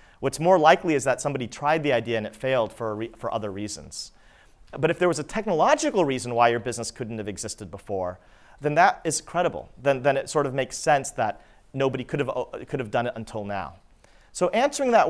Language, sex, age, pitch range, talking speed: English, male, 40-59, 110-150 Hz, 215 wpm